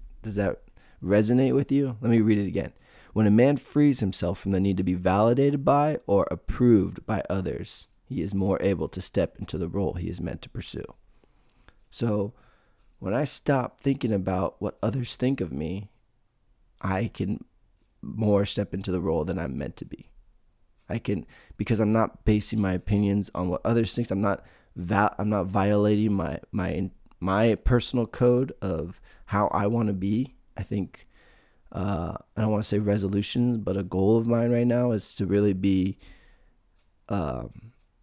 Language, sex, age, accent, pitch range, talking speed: English, male, 20-39, American, 95-115 Hz, 175 wpm